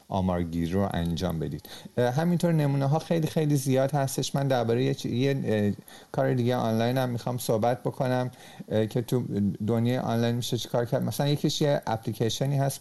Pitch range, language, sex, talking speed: 100-125 Hz, Persian, male, 165 wpm